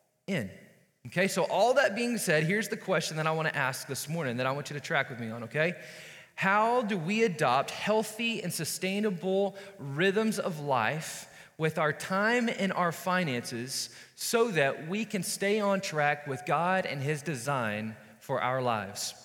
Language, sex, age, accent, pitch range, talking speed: English, male, 20-39, American, 155-215 Hz, 180 wpm